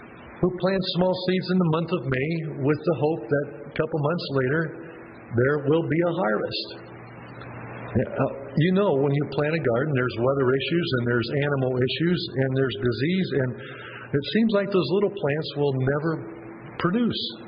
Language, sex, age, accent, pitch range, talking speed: English, male, 50-69, American, 120-165 Hz, 170 wpm